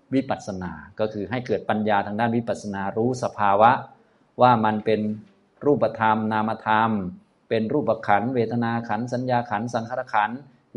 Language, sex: Thai, male